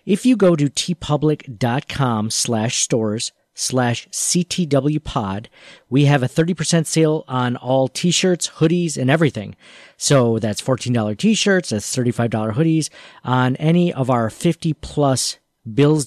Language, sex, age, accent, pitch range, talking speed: English, male, 40-59, American, 125-160 Hz, 120 wpm